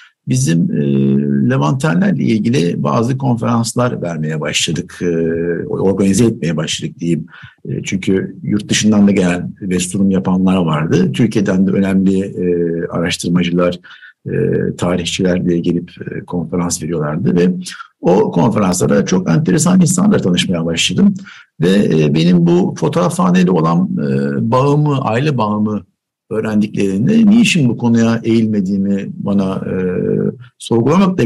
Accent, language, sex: native, Turkish, male